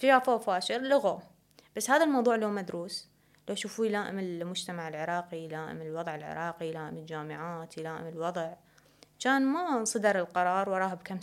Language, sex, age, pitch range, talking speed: Arabic, female, 20-39, 170-215 Hz, 145 wpm